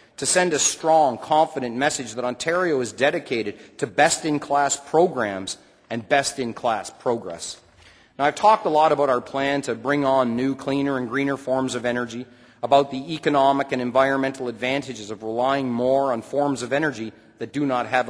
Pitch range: 120-140 Hz